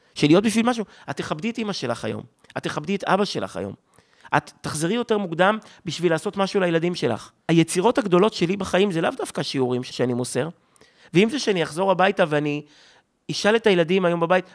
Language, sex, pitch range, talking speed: Hebrew, male, 145-195 Hz, 190 wpm